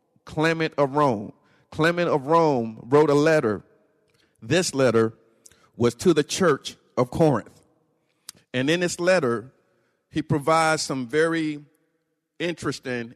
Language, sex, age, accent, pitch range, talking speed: English, male, 50-69, American, 120-155 Hz, 120 wpm